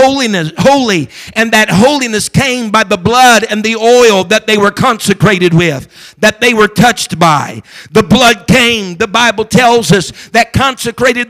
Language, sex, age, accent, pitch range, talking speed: English, male, 50-69, American, 195-235 Hz, 160 wpm